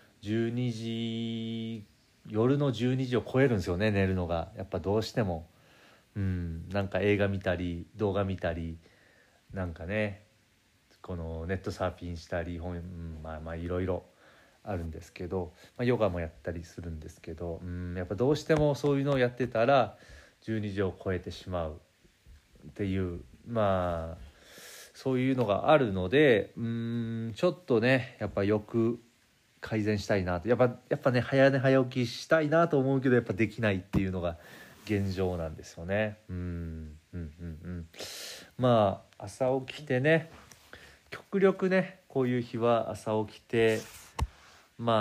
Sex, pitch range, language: male, 90-115 Hz, Japanese